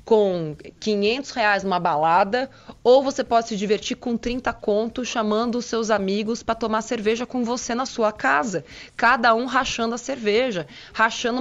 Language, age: Portuguese, 20-39